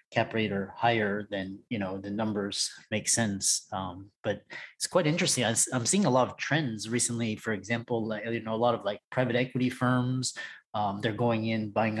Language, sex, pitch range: English, male, 105-120 Hz